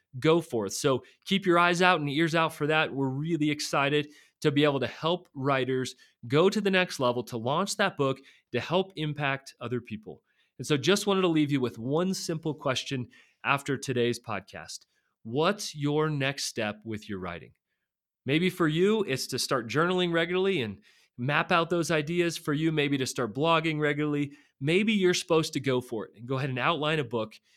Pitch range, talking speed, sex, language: 125-165 Hz, 195 wpm, male, English